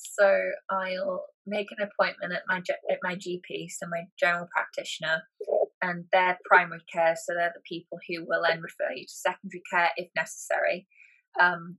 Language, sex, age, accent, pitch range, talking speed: English, female, 20-39, British, 175-200 Hz, 170 wpm